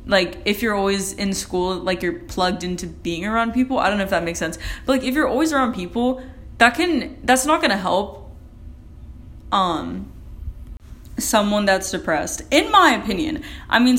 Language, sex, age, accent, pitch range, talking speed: English, female, 10-29, American, 185-250 Hz, 180 wpm